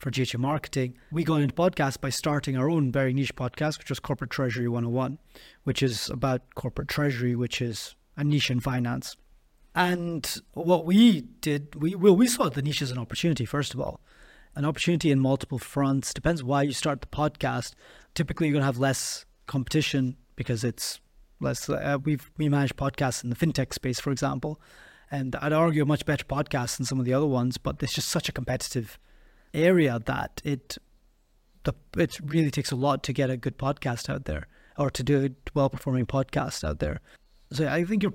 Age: 30-49